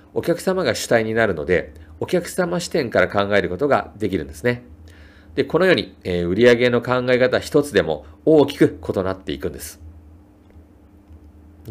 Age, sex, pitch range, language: 40-59, male, 80-120 Hz, Japanese